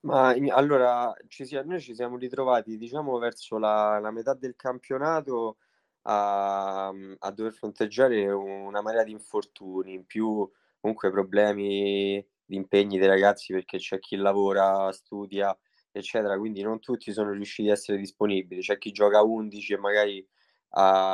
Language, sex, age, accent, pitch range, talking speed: Italian, male, 20-39, native, 100-110 Hz, 150 wpm